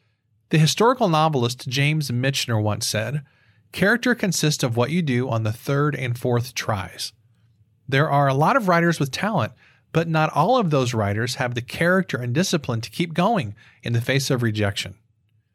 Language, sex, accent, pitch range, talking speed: English, male, American, 115-165 Hz, 180 wpm